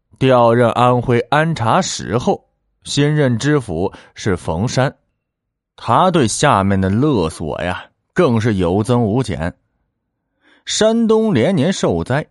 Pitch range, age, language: 100-145 Hz, 30-49, Chinese